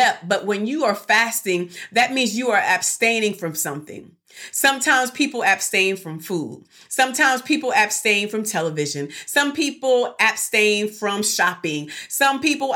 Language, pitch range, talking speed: English, 195-255 Hz, 135 wpm